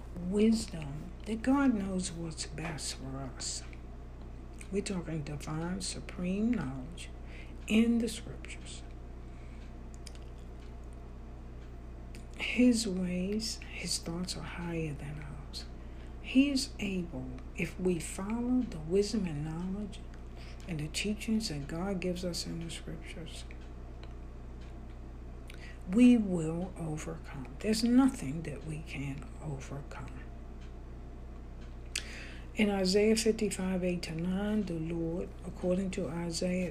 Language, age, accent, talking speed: English, 60-79, American, 100 wpm